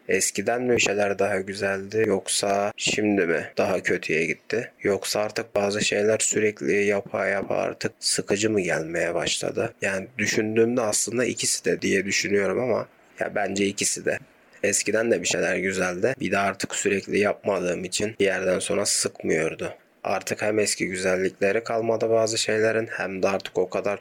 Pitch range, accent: 95-105 Hz, native